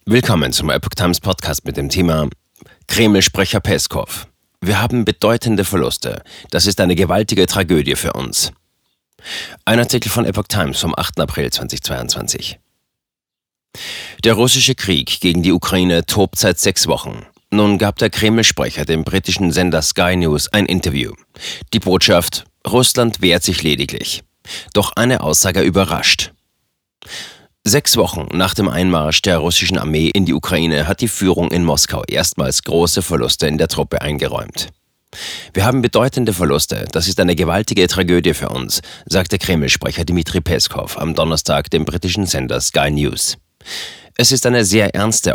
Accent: German